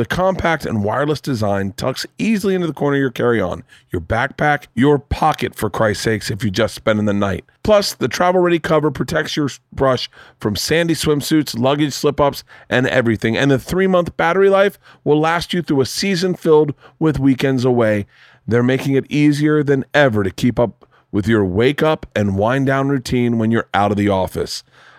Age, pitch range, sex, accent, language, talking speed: 40-59, 115-150 Hz, male, American, English, 185 wpm